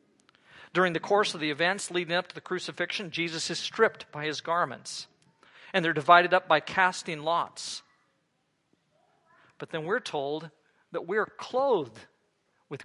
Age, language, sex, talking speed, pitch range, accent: 40-59, English, male, 150 wpm, 150-190 Hz, American